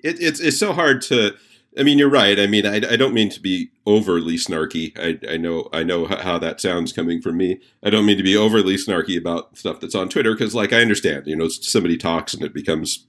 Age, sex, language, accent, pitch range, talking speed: 40-59, male, English, American, 95-115 Hz, 250 wpm